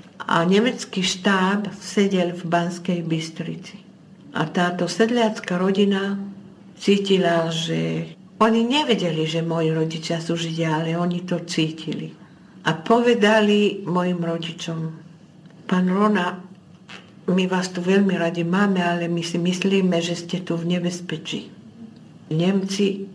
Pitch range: 170-205 Hz